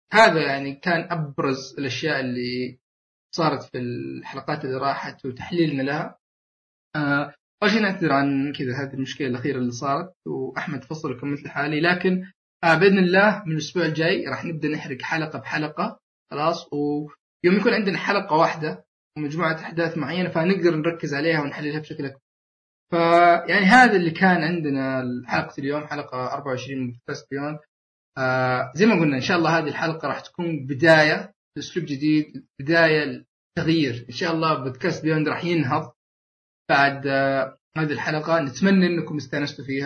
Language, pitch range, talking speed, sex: Arabic, 135-165 Hz, 145 wpm, male